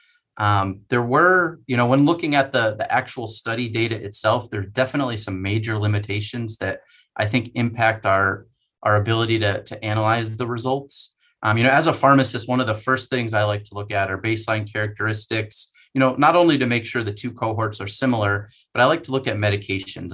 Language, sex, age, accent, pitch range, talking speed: English, male, 30-49, American, 105-130 Hz, 210 wpm